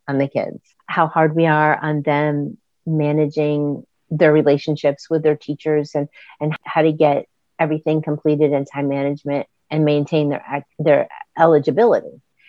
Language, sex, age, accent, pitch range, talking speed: English, female, 40-59, American, 145-165 Hz, 140 wpm